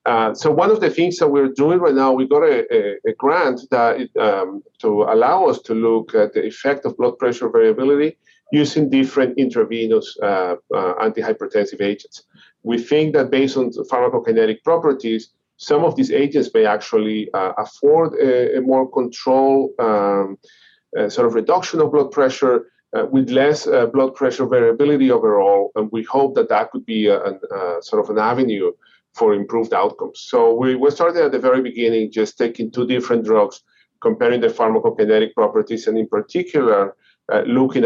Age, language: 40-59, English